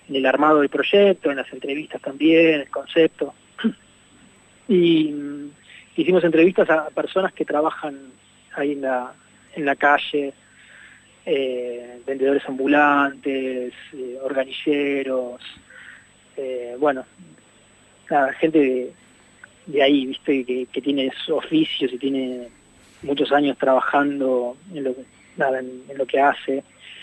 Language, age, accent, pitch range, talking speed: Spanish, 20-39, Argentinian, 135-160 Hz, 120 wpm